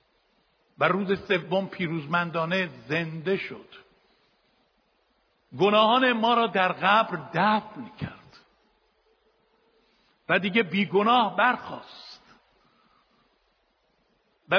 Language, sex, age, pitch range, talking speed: Persian, male, 60-79, 195-255 Hz, 75 wpm